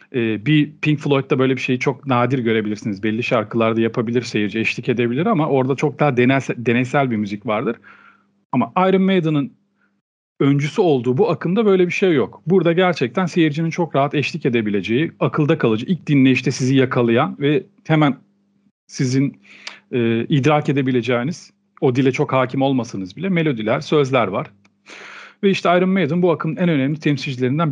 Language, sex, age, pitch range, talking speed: Turkish, male, 40-59, 130-185 Hz, 155 wpm